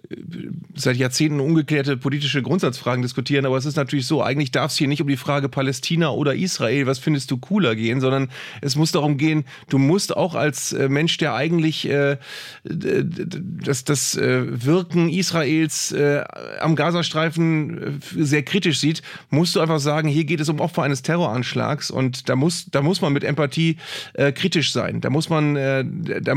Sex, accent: male, German